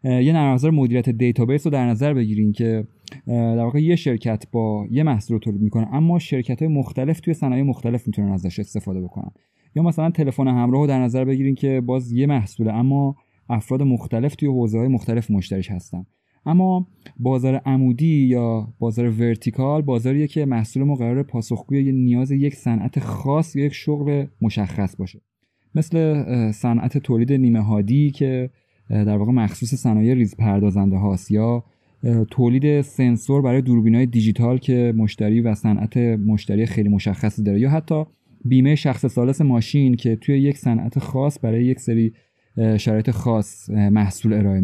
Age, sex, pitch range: 30-49, male, 110-140 Hz